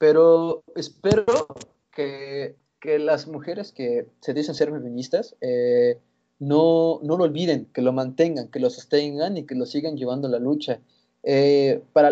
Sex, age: male, 20-39